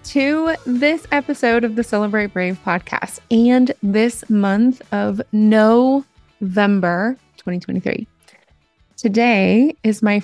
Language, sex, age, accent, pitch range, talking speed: English, female, 20-39, American, 200-245 Hz, 100 wpm